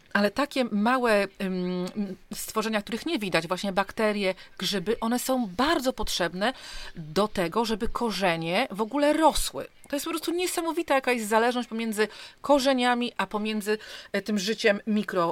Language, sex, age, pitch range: Polish, female, 40-59, 190-230 Hz